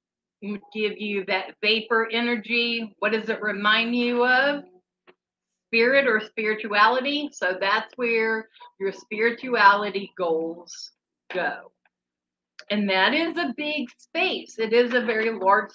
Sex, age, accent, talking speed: female, 40-59, American, 120 wpm